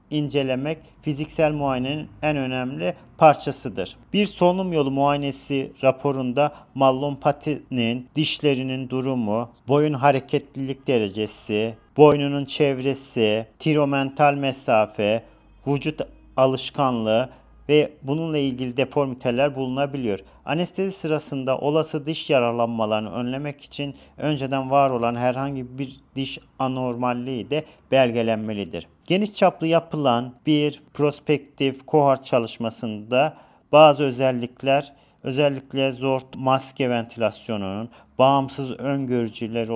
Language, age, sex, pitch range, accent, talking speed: Turkish, 40-59, male, 125-145 Hz, native, 90 wpm